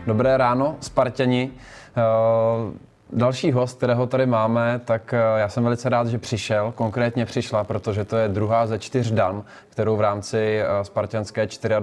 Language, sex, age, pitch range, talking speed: Czech, male, 20-39, 105-115 Hz, 140 wpm